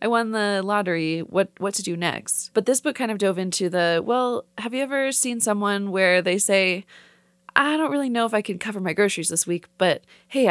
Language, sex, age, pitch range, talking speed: English, female, 20-39, 180-235 Hz, 230 wpm